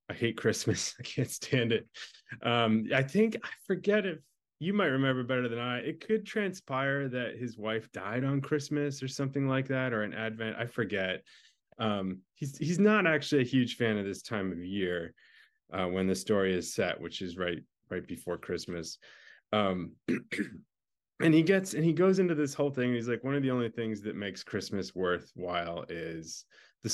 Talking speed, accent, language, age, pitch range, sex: 190 wpm, American, English, 20-39, 95-130 Hz, male